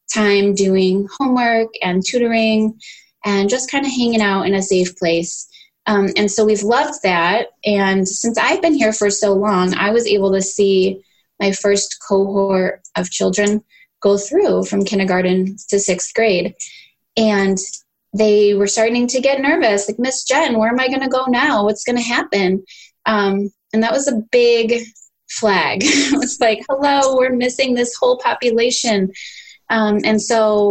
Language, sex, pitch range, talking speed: English, female, 190-235 Hz, 165 wpm